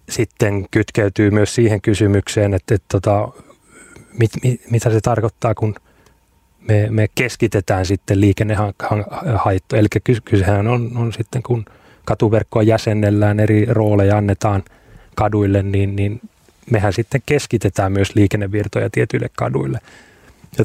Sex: male